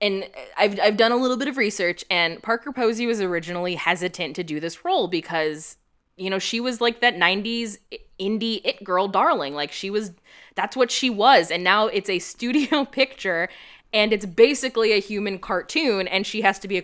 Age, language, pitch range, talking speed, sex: 20-39, English, 195-265 Hz, 200 wpm, female